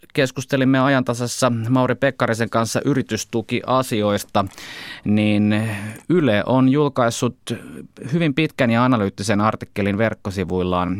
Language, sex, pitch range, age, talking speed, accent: Finnish, male, 100-130 Hz, 20-39, 85 wpm, native